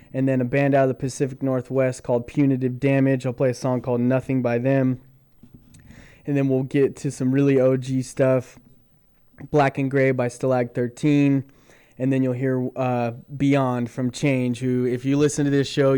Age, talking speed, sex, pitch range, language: 20-39, 185 wpm, male, 125-135 Hz, English